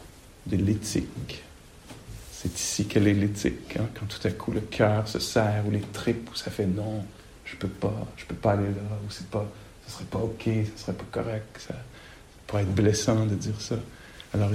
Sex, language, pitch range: male, English, 105-120 Hz